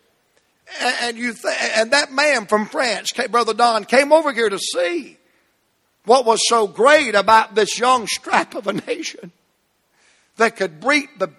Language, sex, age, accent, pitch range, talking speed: English, male, 60-79, American, 195-255 Hz, 165 wpm